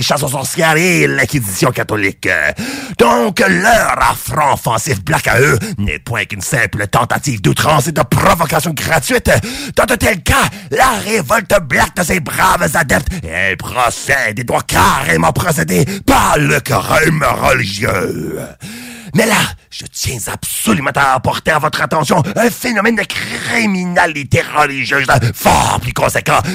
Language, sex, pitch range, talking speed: French, male, 125-185 Hz, 140 wpm